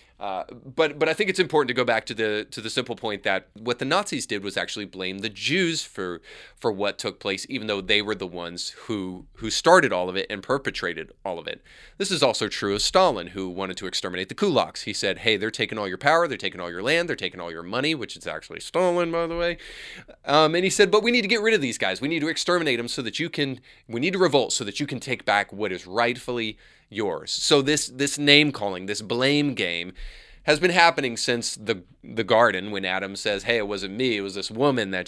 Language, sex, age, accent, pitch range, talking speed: English, male, 30-49, American, 95-145 Hz, 255 wpm